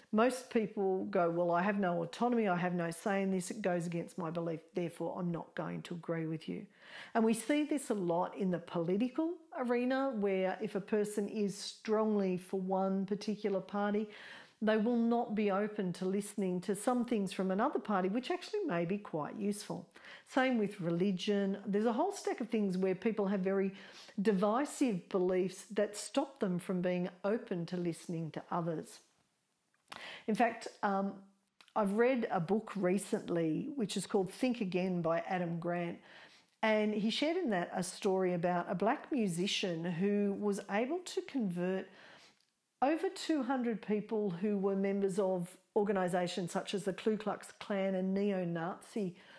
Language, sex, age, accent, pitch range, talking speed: English, female, 50-69, Australian, 180-220 Hz, 170 wpm